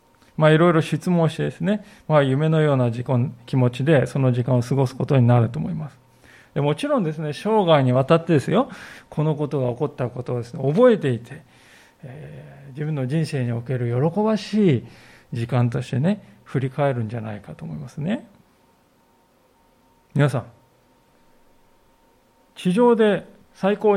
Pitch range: 130-175 Hz